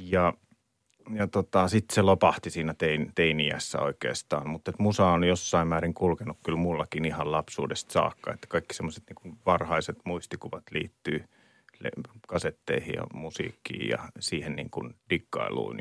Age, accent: 30-49, native